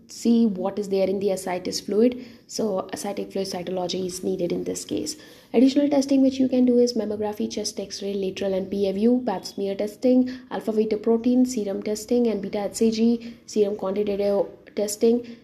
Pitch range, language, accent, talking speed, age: 195-235 Hz, English, Indian, 175 wpm, 20-39